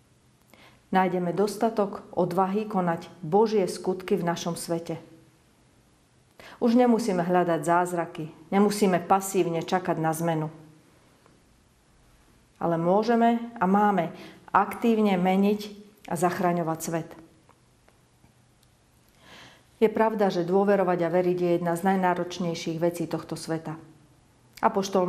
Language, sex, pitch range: Slovak, female, 165-195 Hz